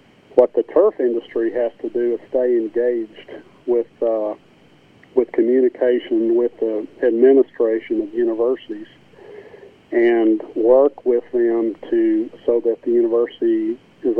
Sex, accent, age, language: male, American, 40-59, English